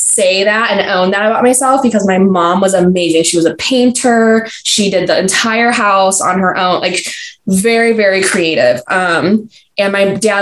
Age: 10-29